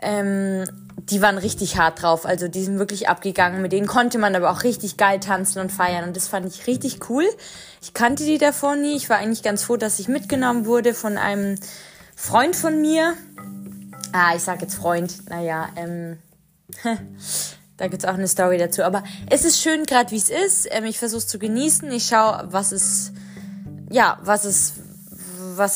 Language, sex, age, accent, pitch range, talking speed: German, female, 20-39, German, 195-235 Hz, 190 wpm